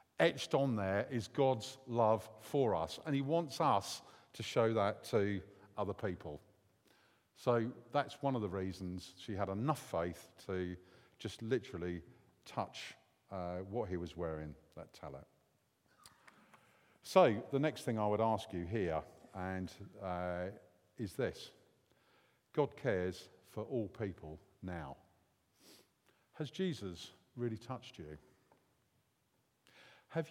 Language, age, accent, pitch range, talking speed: English, 50-69, British, 95-135 Hz, 125 wpm